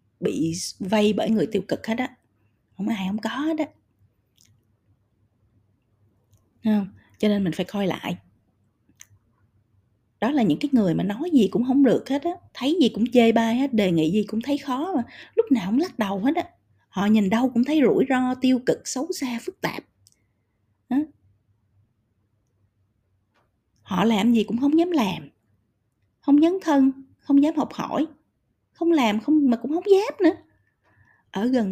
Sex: female